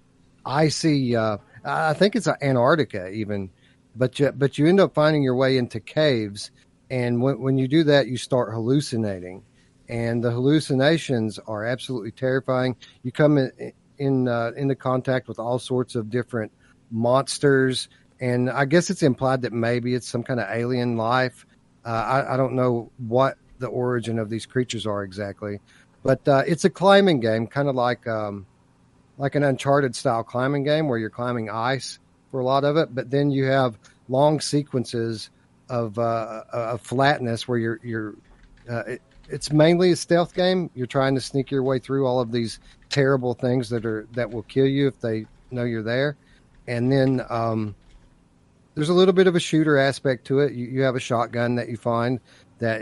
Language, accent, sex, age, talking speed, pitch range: English, American, male, 40-59, 185 wpm, 115-135 Hz